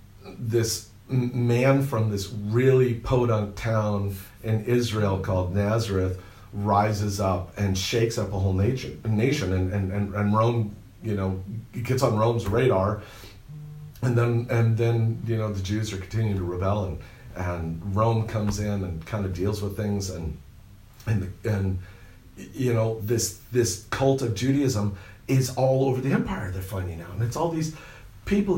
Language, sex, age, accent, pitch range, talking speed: English, male, 40-59, American, 100-130 Hz, 160 wpm